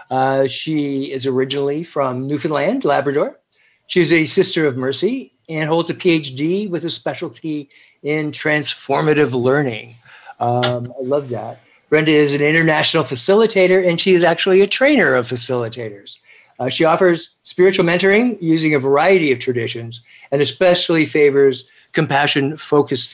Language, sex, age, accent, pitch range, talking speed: English, male, 60-79, American, 135-170 Hz, 135 wpm